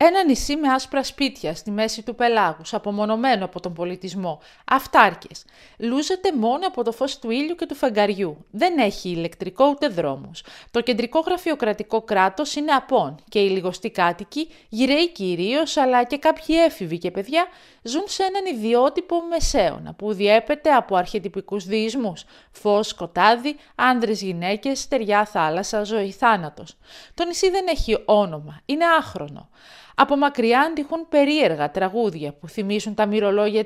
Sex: female